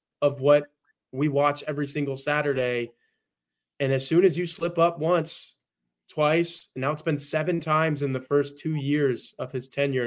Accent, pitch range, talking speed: American, 130-160 Hz, 180 wpm